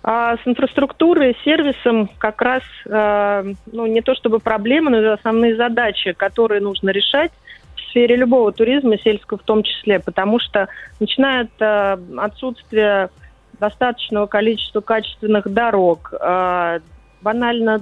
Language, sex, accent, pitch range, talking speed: Russian, female, native, 190-230 Hz, 120 wpm